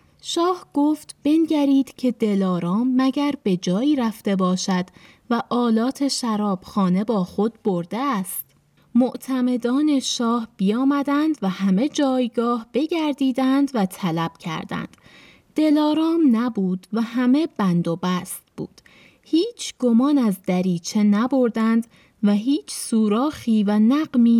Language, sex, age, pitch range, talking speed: Persian, female, 20-39, 195-270 Hz, 110 wpm